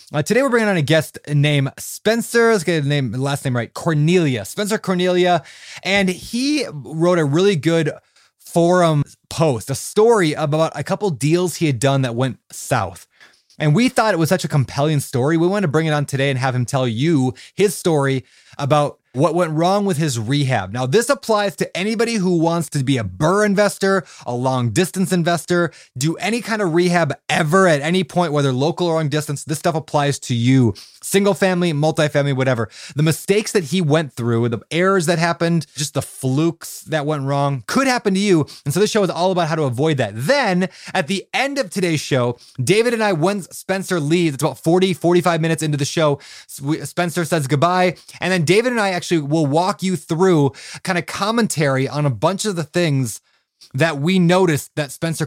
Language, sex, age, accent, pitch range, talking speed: English, male, 20-39, American, 145-185 Hz, 200 wpm